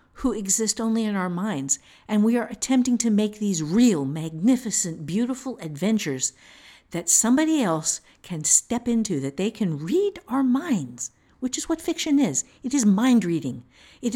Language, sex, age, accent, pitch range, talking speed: English, female, 50-69, American, 175-255 Hz, 165 wpm